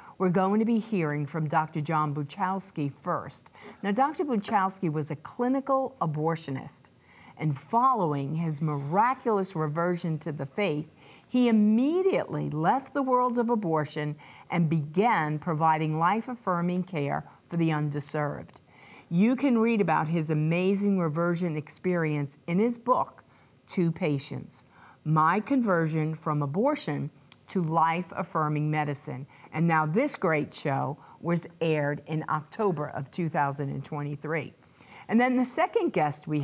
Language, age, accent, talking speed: English, 50-69, American, 125 wpm